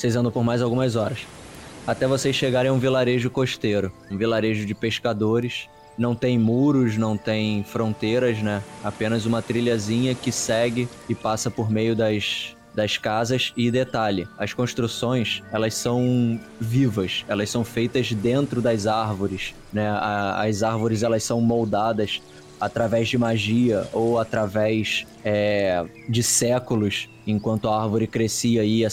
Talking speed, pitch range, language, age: 140 wpm, 105-120 Hz, Portuguese, 20-39